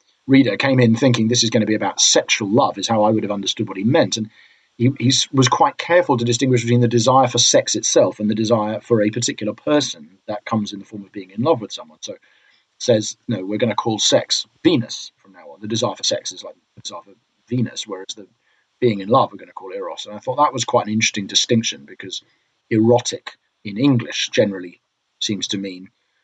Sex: male